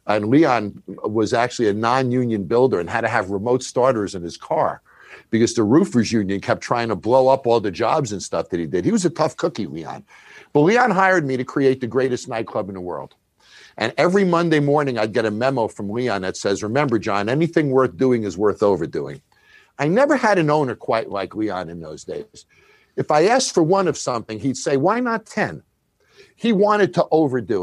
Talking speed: 215 wpm